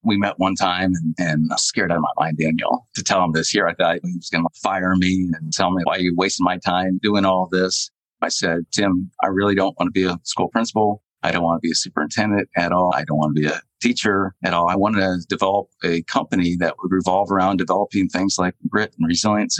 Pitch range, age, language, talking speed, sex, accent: 85-95 Hz, 40-59, English, 260 wpm, male, American